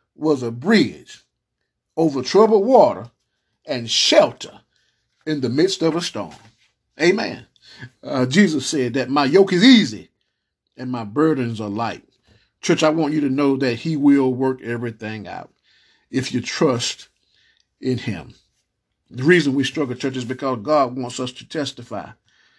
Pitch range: 125-155 Hz